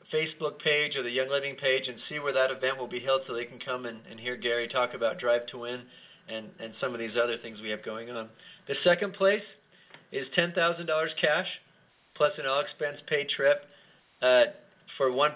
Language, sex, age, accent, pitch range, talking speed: English, male, 40-59, American, 130-170 Hz, 205 wpm